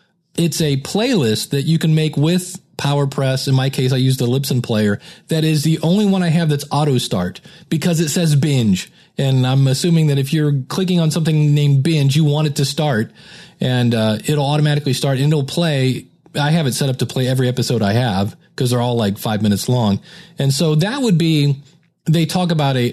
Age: 40-59